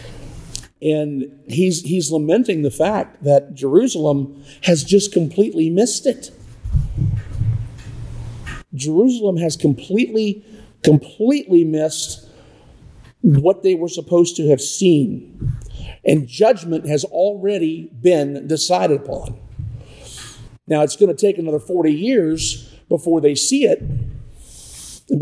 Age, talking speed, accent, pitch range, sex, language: 50-69, 105 wpm, American, 125-185 Hz, male, English